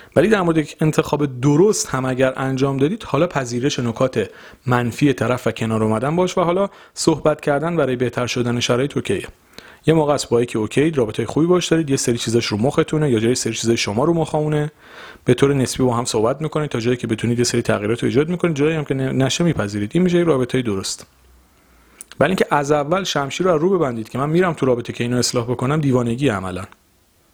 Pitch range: 110-145 Hz